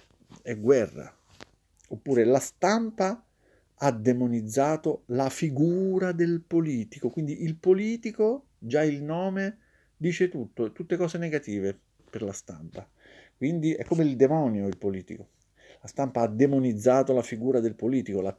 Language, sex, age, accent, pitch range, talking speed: Italian, male, 50-69, native, 110-170 Hz, 130 wpm